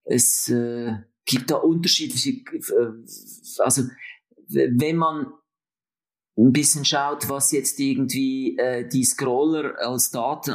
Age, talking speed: 40-59, 115 wpm